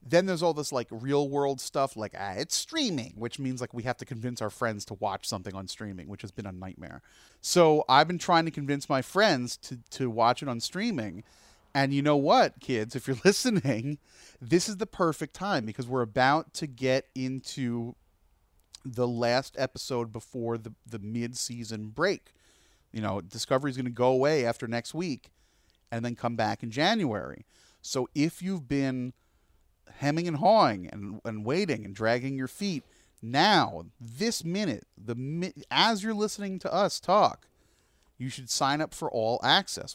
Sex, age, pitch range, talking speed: male, 30-49, 110-145 Hz, 180 wpm